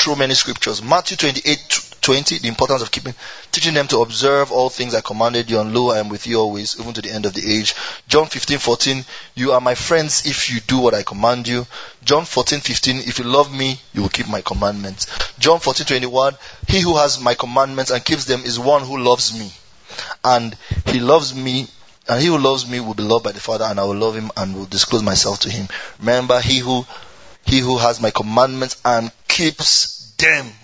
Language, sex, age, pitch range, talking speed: English, male, 20-39, 110-135 Hz, 220 wpm